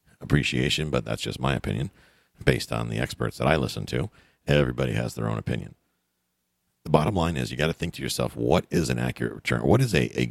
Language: English